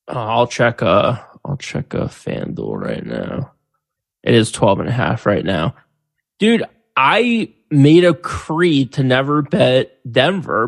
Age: 20-39